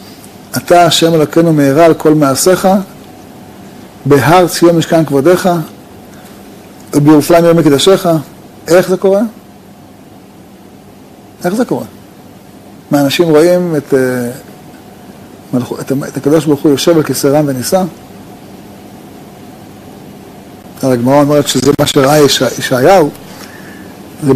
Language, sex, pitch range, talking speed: Hebrew, male, 140-170 Hz, 95 wpm